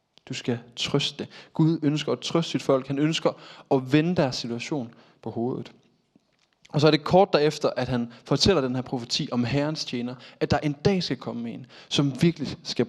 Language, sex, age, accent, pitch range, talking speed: Danish, male, 20-39, native, 120-150 Hz, 195 wpm